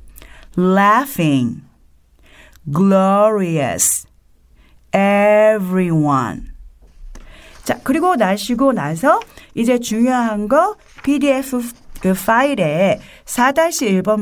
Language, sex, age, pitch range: Korean, female, 40-59, 165-260 Hz